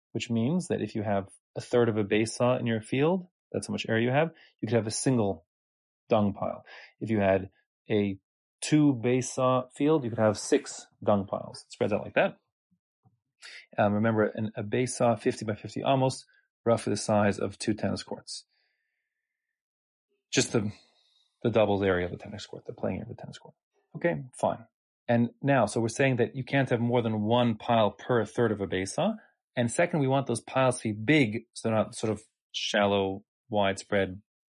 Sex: male